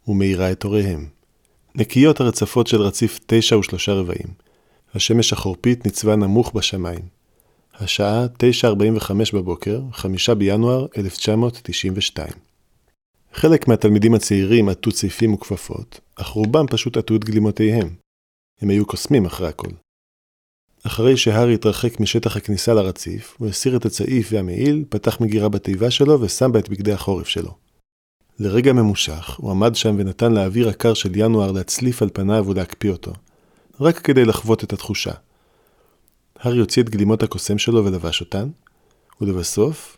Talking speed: 130 wpm